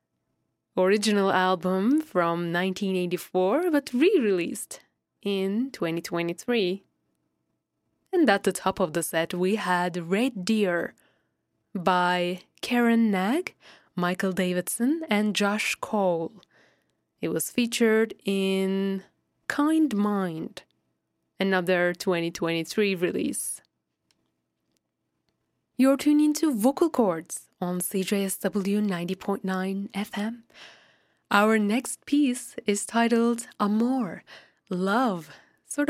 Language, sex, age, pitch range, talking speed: English, female, 20-39, 180-230 Hz, 95 wpm